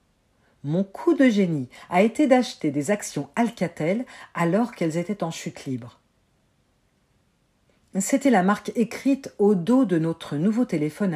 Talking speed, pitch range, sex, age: 150 wpm, 155-240 Hz, female, 50-69